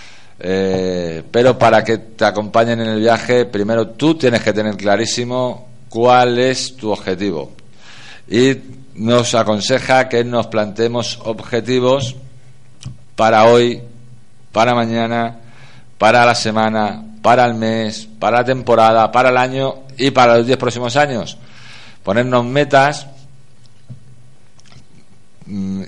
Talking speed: 120 wpm